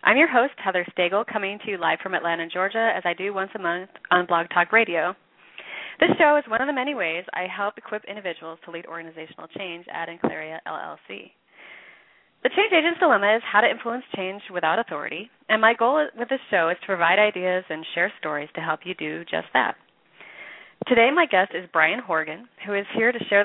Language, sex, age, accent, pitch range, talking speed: English, female, 30-49, American, 170-225 Hz, 210 wpm